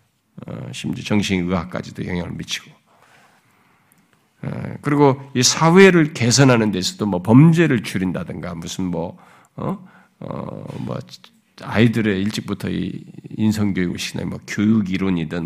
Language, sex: Korean, male